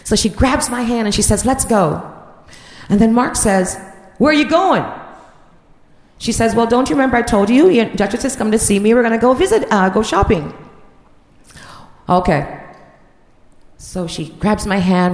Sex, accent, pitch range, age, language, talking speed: female, American, 195-255 Hz, 40-59, English, 185 wpm